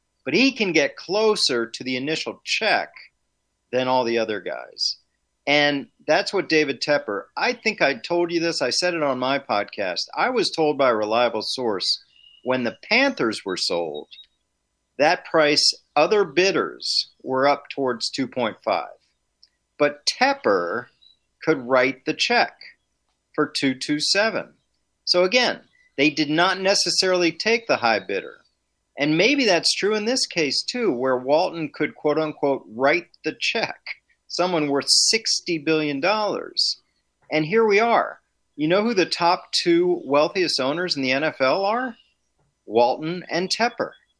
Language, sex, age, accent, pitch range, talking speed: English, male, 40-59, American, 130-180 Hz, 145 wpm